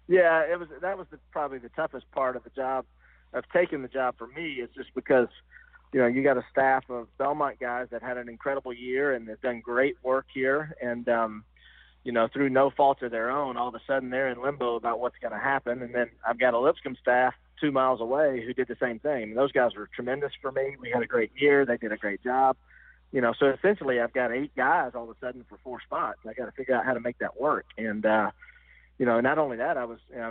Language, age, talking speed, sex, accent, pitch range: English, 40-59, 255 wpm, male, American, 120-135 Hz